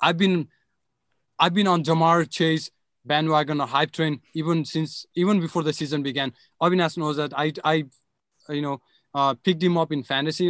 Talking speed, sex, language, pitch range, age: 175 wpm, male, English, 130-160 Hz, 20-39